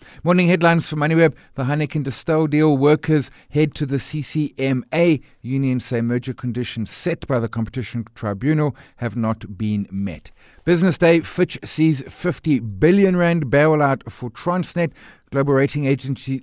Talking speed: 140 wpm